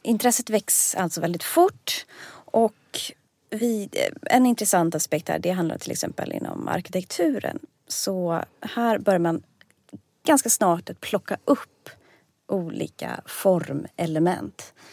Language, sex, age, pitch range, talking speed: Swedish, female, 30-49, 170-235 Hz, 105 wpm